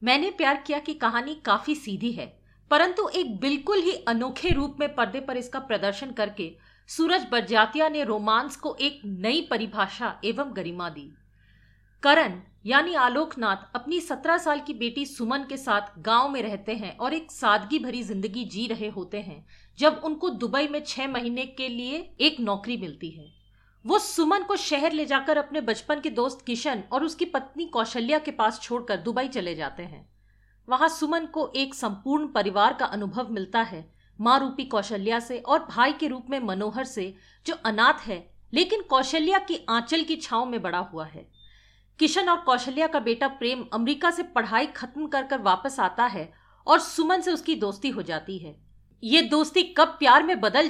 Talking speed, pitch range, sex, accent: 180 wpm, 205-300 Hz, female, native